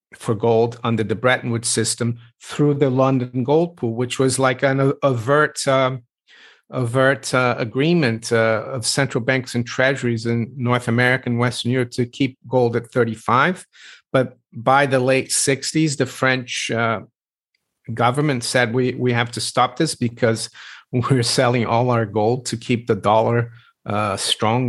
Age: 50-69